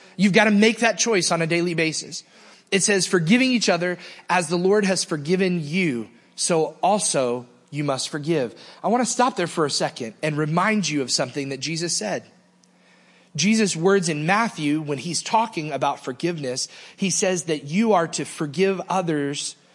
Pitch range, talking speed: 150-195 Hz, 180 wpm